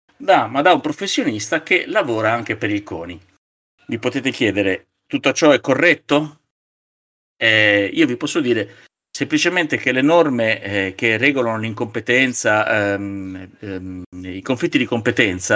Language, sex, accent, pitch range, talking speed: Italian, male, native, 100-125 Hz, 135 wpm